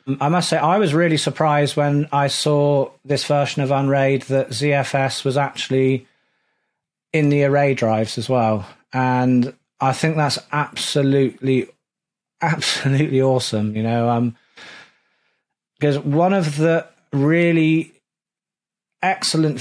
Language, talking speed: English, 120 wpm